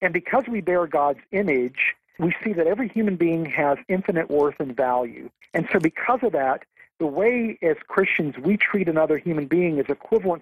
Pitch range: 150-190 Hz